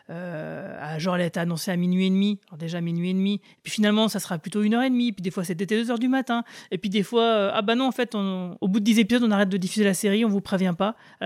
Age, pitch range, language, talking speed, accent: 30-49, 175-220 Hz, French, 315 wpm, French